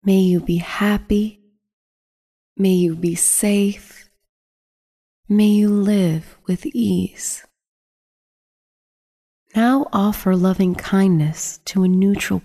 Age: 30-49